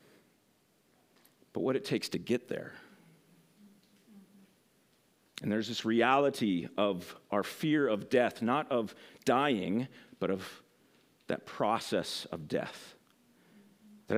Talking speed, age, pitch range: 110 wpm, 40-59, 110-165 Hz